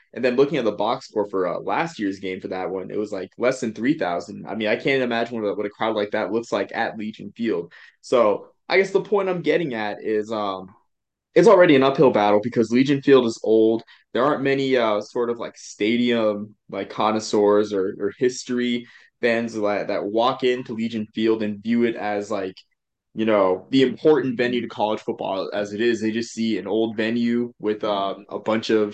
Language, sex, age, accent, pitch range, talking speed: English, male, 20-39, American, 105-120 Hz, 215 wpm